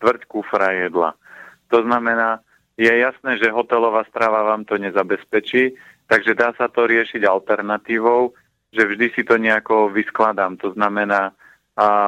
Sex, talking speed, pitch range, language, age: male, 130 wpm, 100-115 Hz, Slovak, 40-59